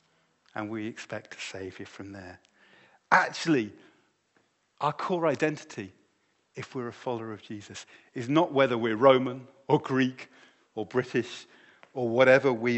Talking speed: 140 wpm